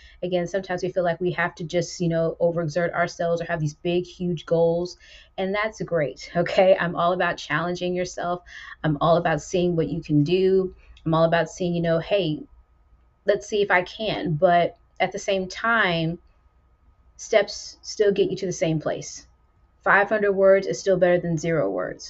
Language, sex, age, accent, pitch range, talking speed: English, female, 30-49, American, 160-185 Hz, 185 wpm